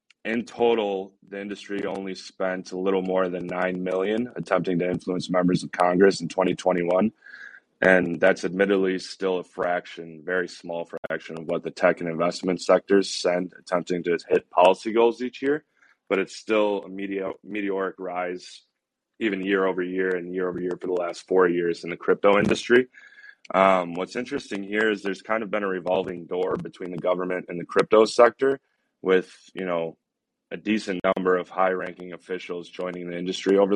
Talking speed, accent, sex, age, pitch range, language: 180 wpm, American, male, 20-39, 90-100 Hz, English